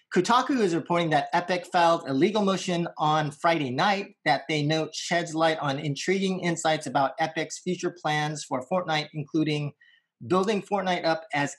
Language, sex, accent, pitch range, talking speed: English, male, American, 150-180 Hz, 160 wpm